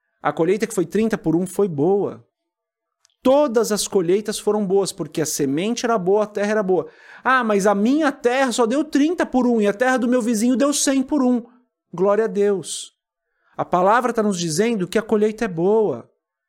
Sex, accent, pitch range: male, Brazilian, 180-235 Hz